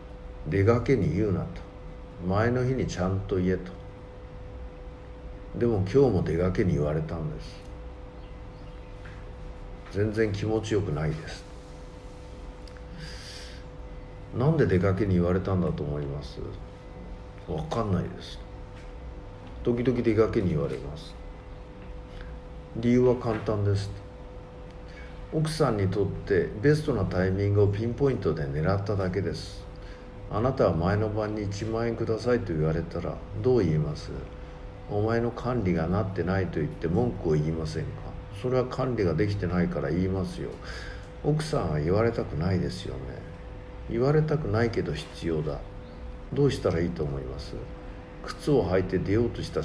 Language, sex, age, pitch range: Japanese, male, 50-69, 85-115 Hz